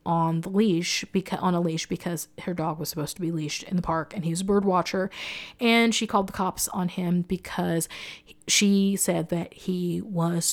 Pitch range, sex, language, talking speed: 165-190 Hz, female, English, 210 wpm